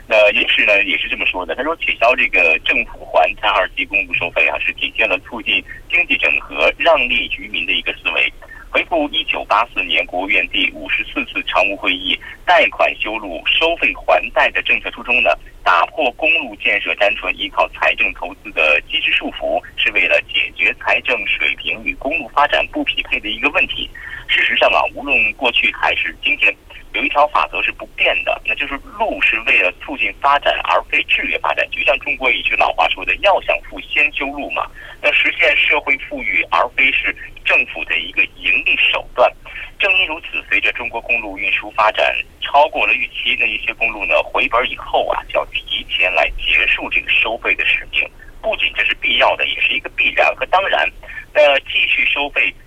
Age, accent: 50-69, Chinese